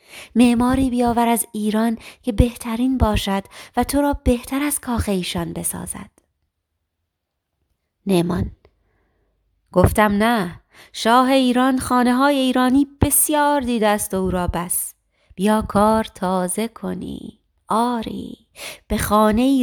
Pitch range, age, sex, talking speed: 190-250 Hz, 30-49, female, 110 wpm